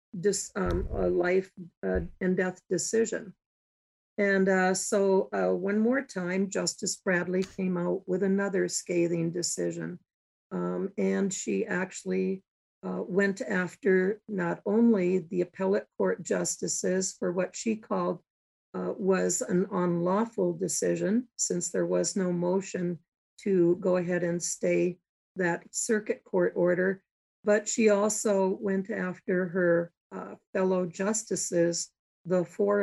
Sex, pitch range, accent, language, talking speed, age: female, 175-195 Hz, American, English, 125 wpm, 50-69